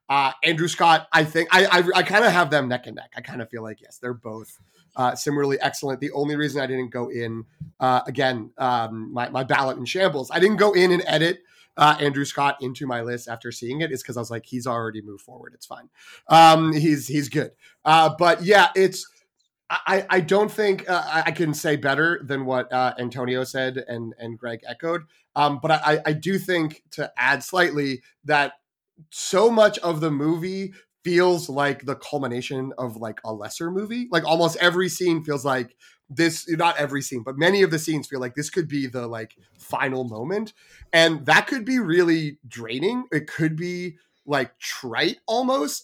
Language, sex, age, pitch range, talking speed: English, male, 30-49, 125-175 Hz, 200 wpm